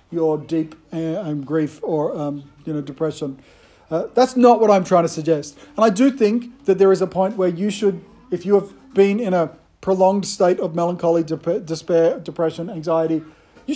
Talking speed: 190 wpm